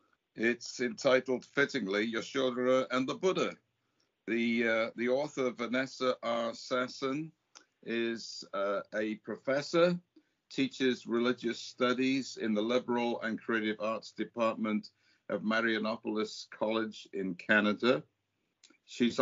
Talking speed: 105 wpm